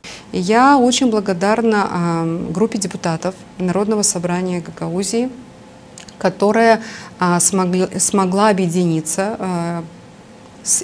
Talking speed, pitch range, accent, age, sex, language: 65 wpm, 170-195 Hz, native, 30-49, female, Russian